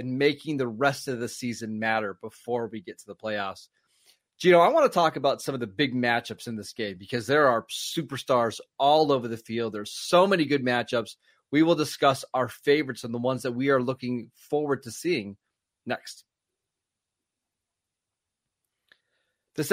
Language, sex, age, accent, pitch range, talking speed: English, male, 30-49, American, 125-165 Hz, 175 wpm